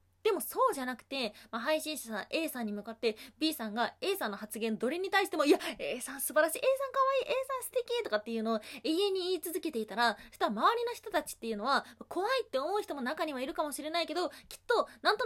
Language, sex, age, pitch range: Japanese, female, 20-39, 225-365 Hz